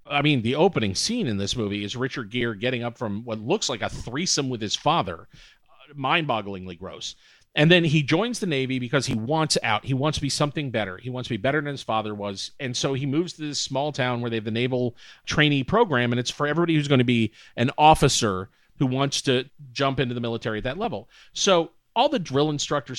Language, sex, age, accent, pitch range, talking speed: English, male, 40-59, American, 120-155 Hz, 235 wpm